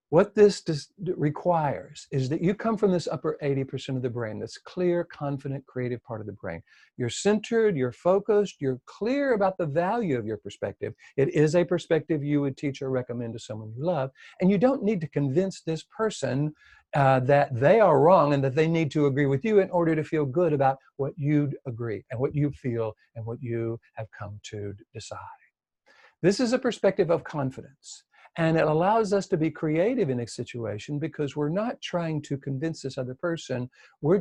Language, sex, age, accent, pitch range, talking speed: English, male, 60-79, American, 130-175 Hz, 200 wpm